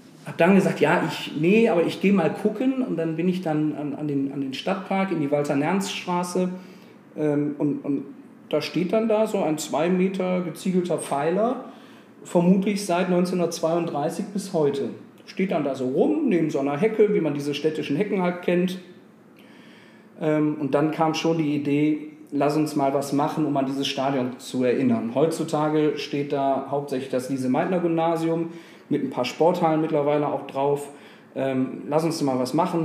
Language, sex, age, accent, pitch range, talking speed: German, male, 40-59, German, 140-185 Hz, 185 wpm